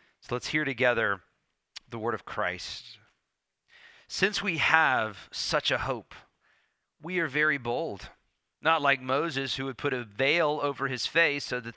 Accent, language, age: American, English, 40-59